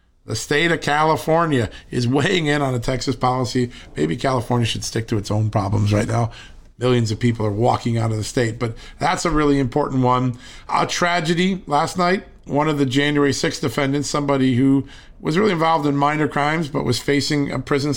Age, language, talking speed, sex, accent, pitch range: 40-59, English, 195 wpm, male, American, 120-145 Hz